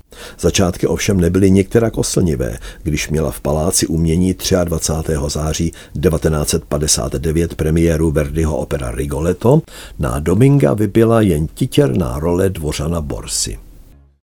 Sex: male